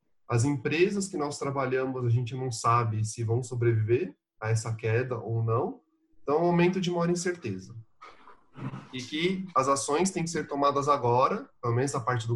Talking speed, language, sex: 185 wpm, Portuguese, male